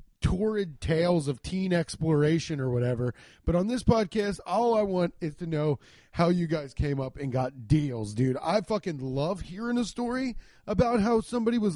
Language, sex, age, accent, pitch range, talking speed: English, male, 30-49, American, 135-200 Hz, 185 wpm